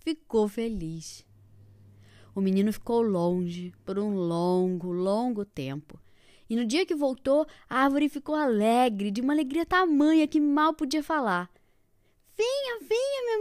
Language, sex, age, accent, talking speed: Portuguese, female, 10-29, Brazilian, 140 wpm